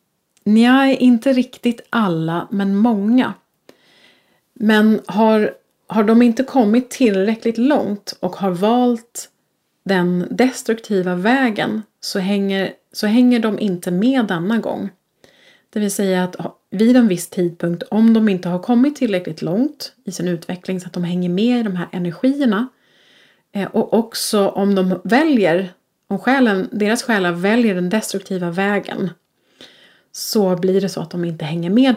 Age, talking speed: 30-49, 150 wpm